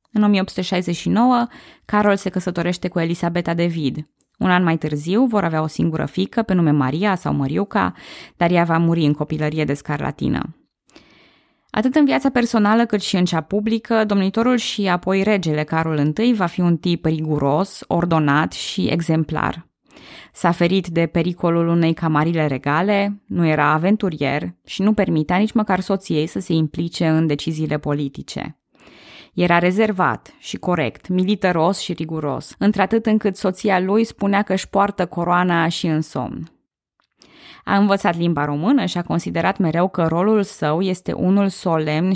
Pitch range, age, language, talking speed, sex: 160-200 Hz, 20-39, Romanian, 155 wpm, female